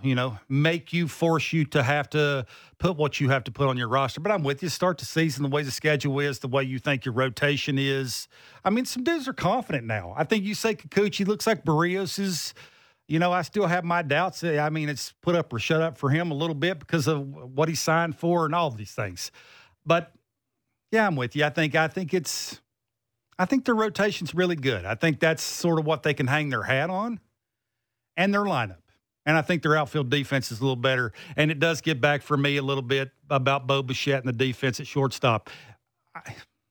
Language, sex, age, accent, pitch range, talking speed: English, male, 50-69, American, 130-170 Hz, 235 wpm